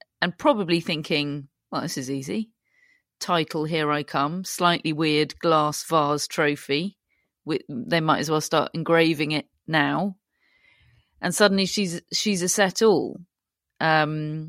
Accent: British